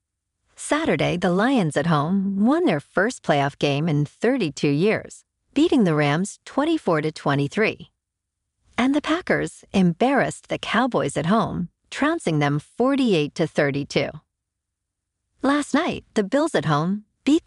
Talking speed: 135 wpm